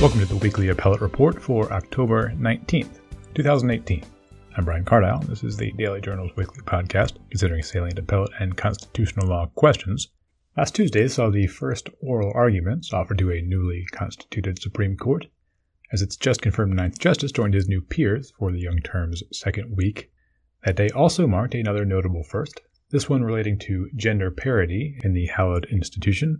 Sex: male